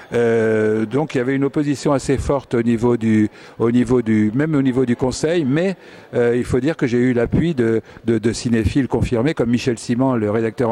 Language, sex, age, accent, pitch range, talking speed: French, male, 50-69, French, 110-135 Hz, 220 wpm